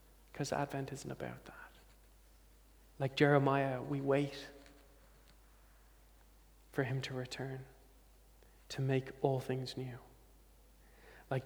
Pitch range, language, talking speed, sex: 135-150 Hz, English, 100 wpm, male